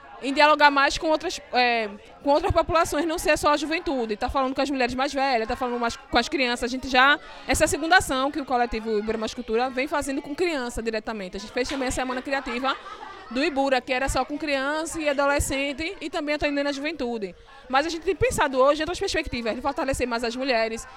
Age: 20-39